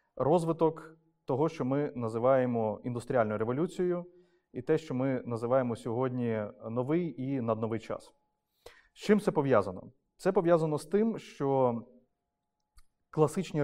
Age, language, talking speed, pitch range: 30-49, Ukrainian, 120 wpm, 120-160 Hz